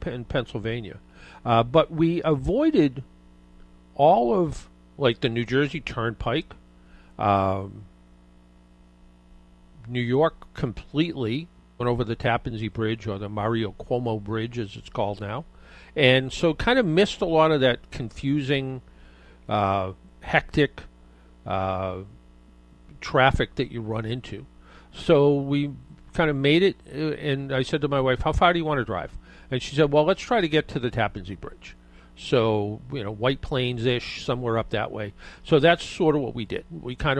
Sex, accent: male, American